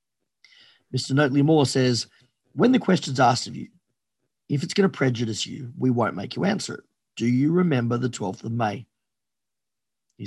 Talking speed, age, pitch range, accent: 175 wpm, 40-59, 120-170 Hz, Australian